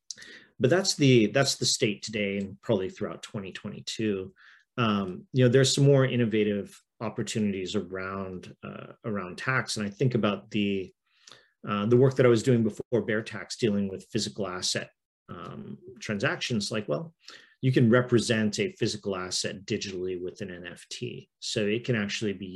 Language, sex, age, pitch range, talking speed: English, male, 40-59, 100-120 Hz, 160 wpm